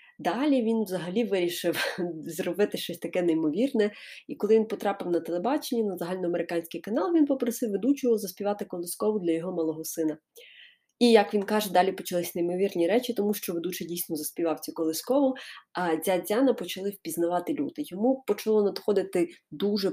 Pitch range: 180-255 Hz